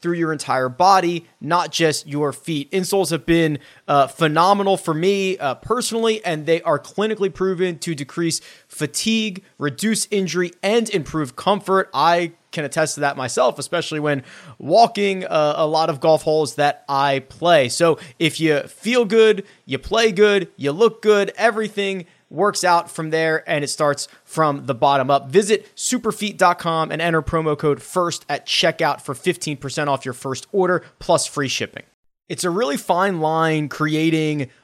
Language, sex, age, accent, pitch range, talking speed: English, male, 20-39, American, 145-180 Hz, 165 wpm